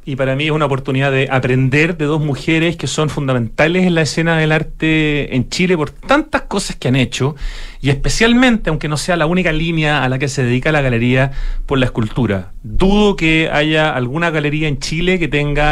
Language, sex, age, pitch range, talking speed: Spanish, male, 30-49, 130-170 Hz, 205 wpm